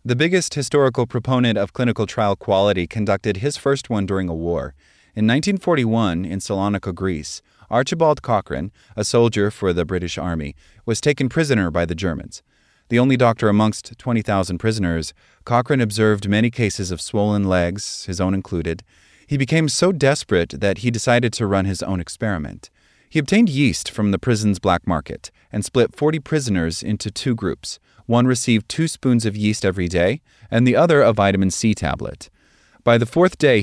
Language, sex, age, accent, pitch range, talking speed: English, male, 30-49, American, 95-125 Hz, 170 wpm